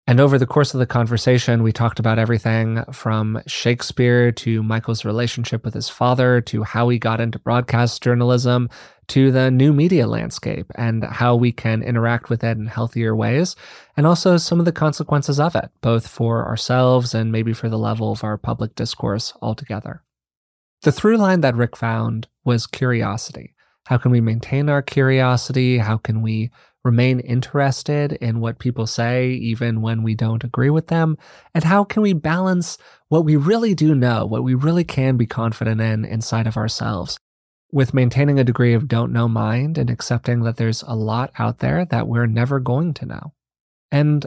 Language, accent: English, American